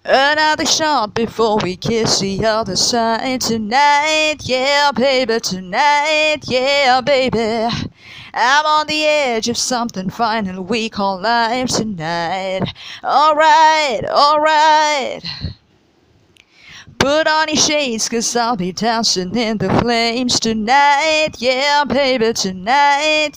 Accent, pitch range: American, 220-305 Hz